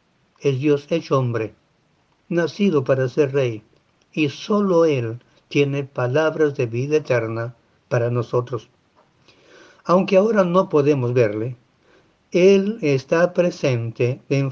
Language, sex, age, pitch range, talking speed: Spanish, male, 50-69, 130-160 Hz, 110 wpm